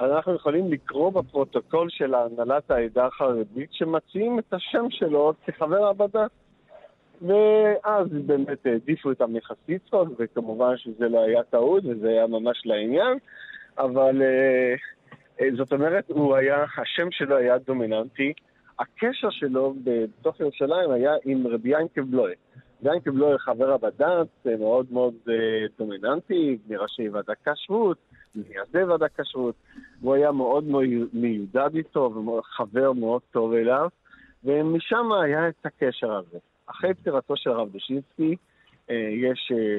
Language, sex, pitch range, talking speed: Hebrew, male, 120-155 Hz, 120 wpm